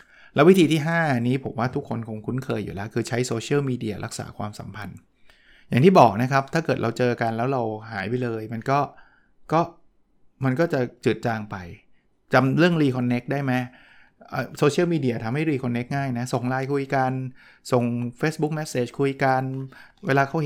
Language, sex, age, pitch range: Thai, male, 20-39, 115-140 Hz